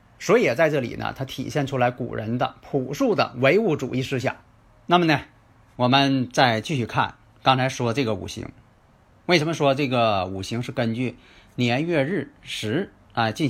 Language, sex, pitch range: Chinese, male, 110-145 Hz